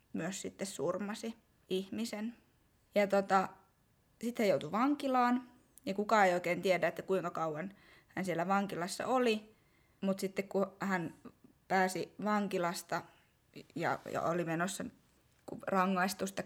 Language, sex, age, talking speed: Finnish, female, 20-39, 115 wpm